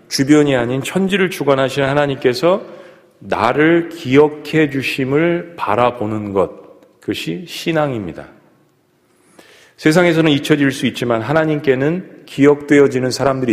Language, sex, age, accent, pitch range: Korean, male, 40-59, native, 115-155 Hz